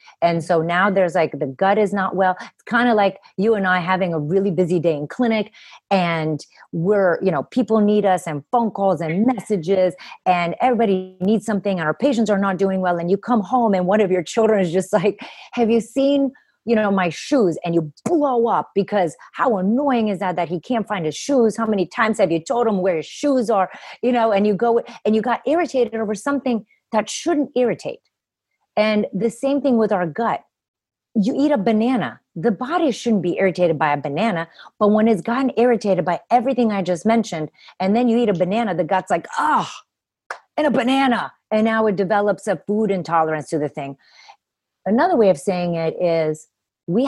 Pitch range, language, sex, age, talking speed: 180-235 Hz, English, female, 30-49, 210 wpm